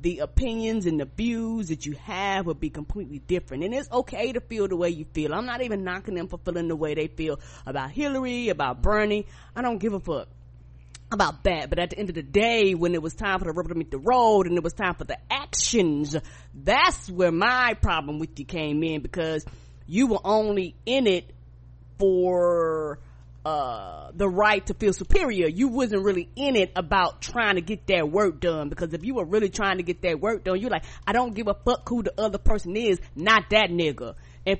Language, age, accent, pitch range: English, 20-39, American, 175-250 Hz